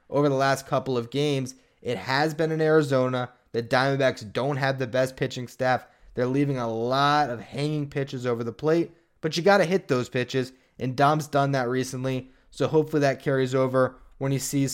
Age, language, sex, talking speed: 20-39, English, male, 200 wpm